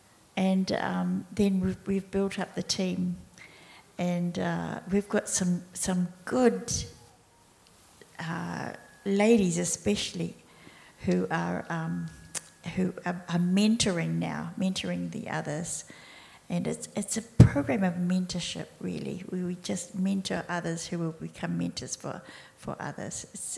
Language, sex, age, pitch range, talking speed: English, female, 50-69, 145-190 Hz, 130 wpm